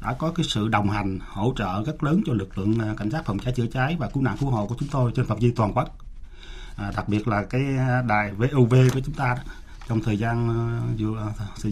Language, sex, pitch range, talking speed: Vietnamese, male, 105-130 Hz, 245 wpm